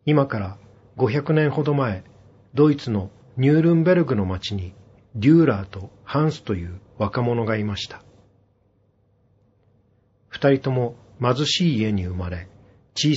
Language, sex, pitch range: Japanese, male, 100-135 Hz